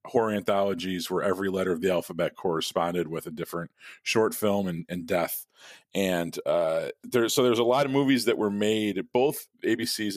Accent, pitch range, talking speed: American, 85-105 Hz, 185 wpm